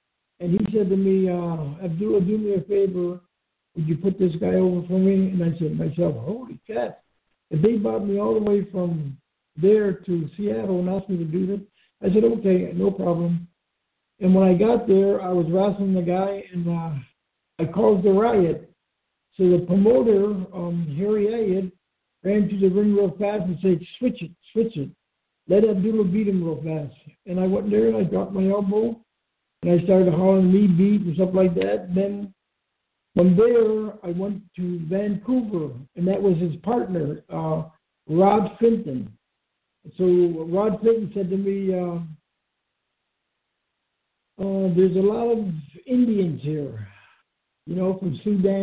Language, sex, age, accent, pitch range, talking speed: English, male, 60-79, American, 175-205 Hz, 175 wpm